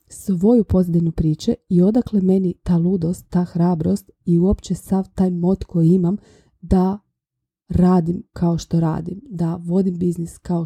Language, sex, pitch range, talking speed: Croatian, female, 175-195 Hz, 145 wpm